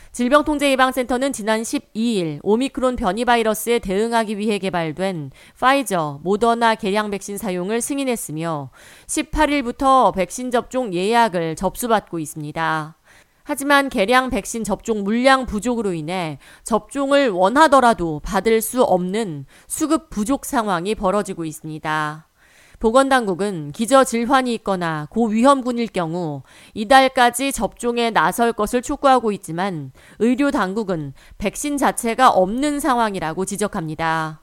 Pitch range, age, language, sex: 180-255 Hz, 40-59, Korean, female